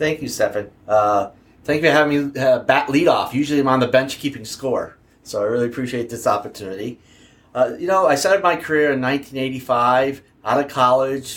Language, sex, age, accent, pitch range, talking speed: English, male, 30-49, American, 105-130 Hz, 200 wpm